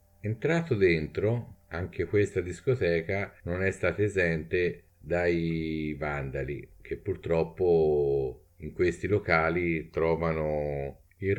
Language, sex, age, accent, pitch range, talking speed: Italian, male, 50-69, native, 80-105 Hz, 95 wpm